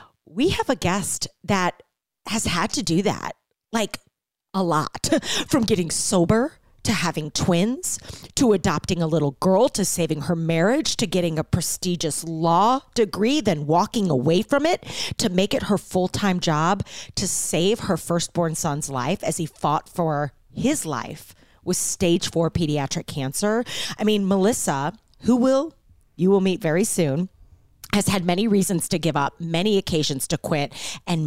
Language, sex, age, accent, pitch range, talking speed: English, female, 40-59, American, 155-205 Hz, 160 wpm